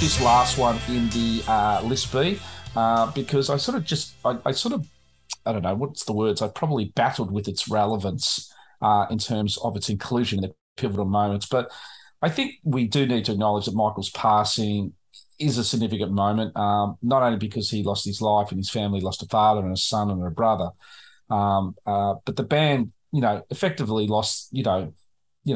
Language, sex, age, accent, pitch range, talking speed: English, male, 40-59, Australian, 105-125 Hz, 205 wpm